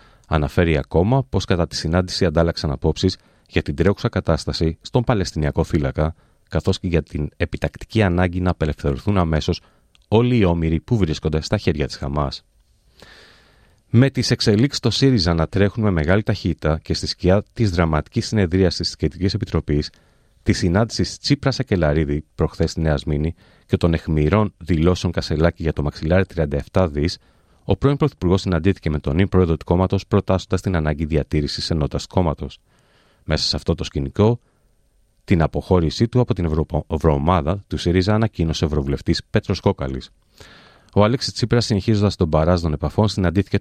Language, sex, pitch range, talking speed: Greek, male, 80-100 Hz, 150 wpm